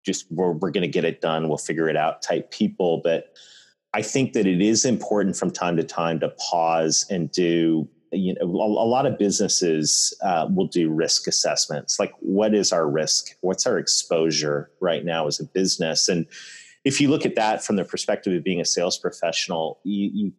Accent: American